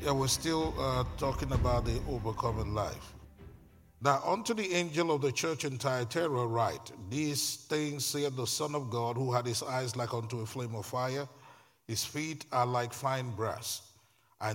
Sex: male